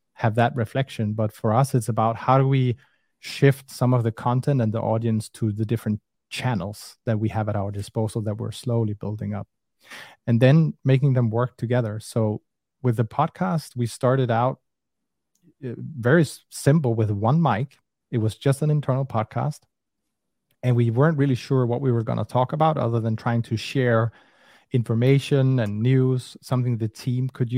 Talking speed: 180 wpm